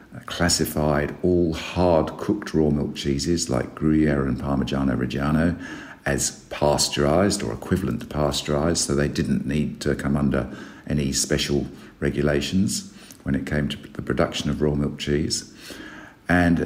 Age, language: 50-69, English